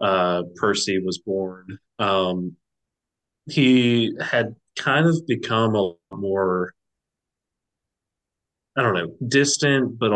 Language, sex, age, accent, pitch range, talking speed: English, male, 30-49, American, 95-110 Hz, 100 wpm